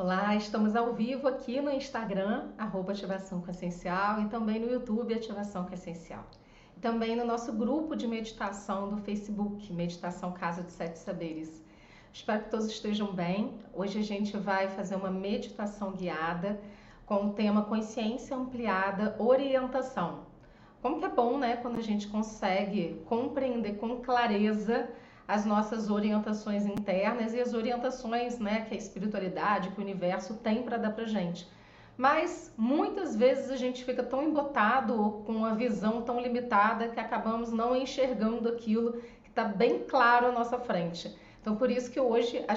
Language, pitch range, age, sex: Portuguese, 200-240 Hz, 40-59, female